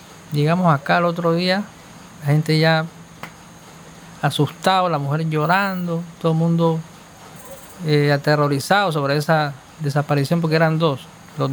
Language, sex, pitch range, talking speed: Spanish, male, 150-185 Hz, 125 wpm